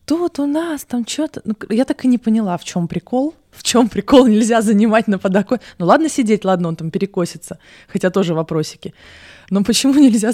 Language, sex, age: Russian, female, 20-39